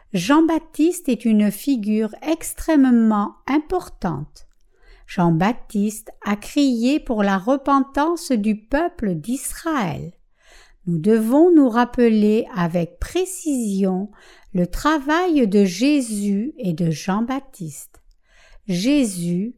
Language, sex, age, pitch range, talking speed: French, female, 60-79, 200-295 Hz, 90 wpm